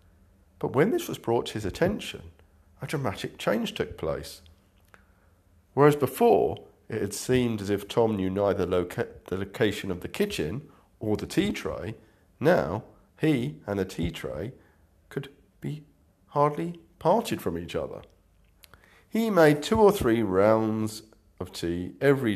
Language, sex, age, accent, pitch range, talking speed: English, male, 40-59, British, 90-110 Hz, 145 wpm